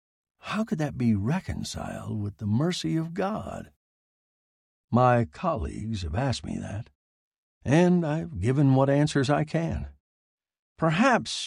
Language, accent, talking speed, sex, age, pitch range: English, American, 125 wpm, male, 60-79, 100-150 Hz